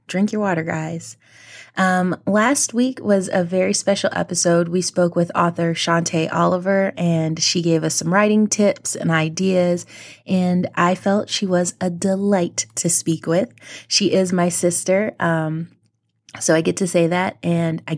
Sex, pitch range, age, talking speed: female, 165-190 Hz, 20-39, 165 wpm